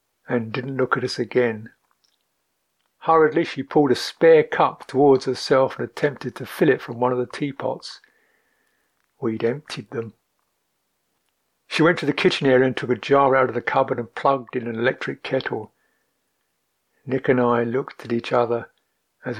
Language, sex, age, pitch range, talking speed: English, male, 60-79, 120-140 Hz, 170 wpm